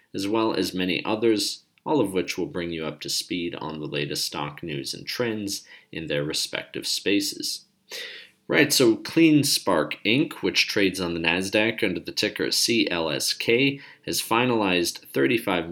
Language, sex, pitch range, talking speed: English, male, 85-110 Hz, 155 wpm